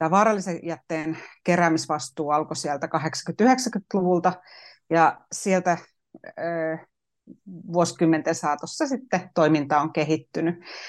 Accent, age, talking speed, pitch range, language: native, 30-49, 85 wpm, 155-190 Hz, Finnish